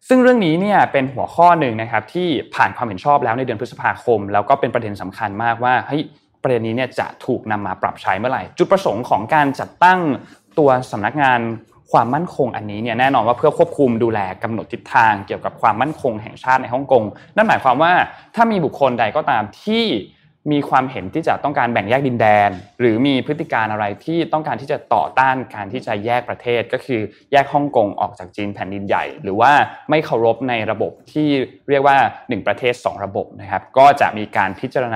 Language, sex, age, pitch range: Thai, male, 20-39, 110-155 Hz